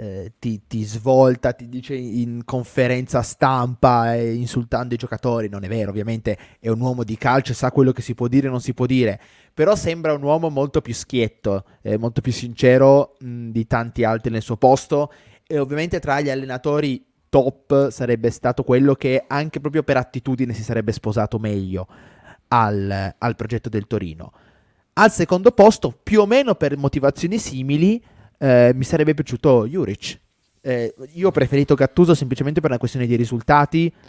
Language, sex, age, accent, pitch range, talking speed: Italian, male, 20-39, native, 110-140 Hz, 170 wpm